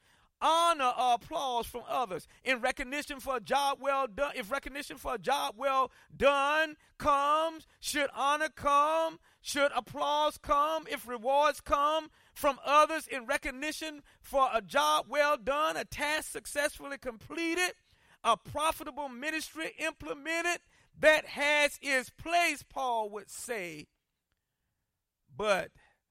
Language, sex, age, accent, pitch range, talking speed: English, male, 40-59, American, 260-315 Hz, 125 wpm